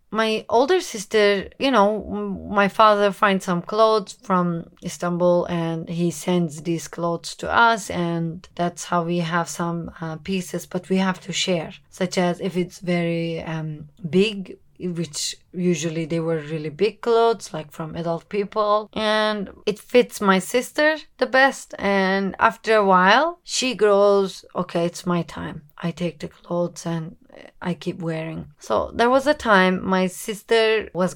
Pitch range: 170-210 Hz